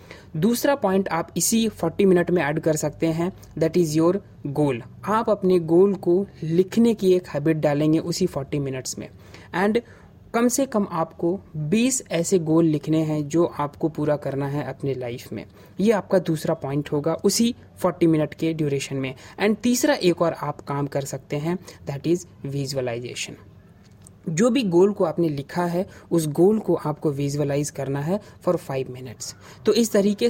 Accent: native